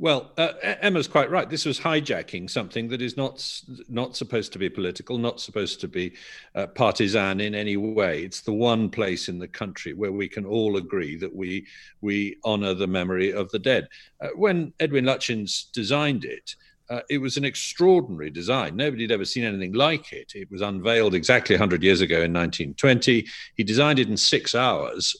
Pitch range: 95-135 Hz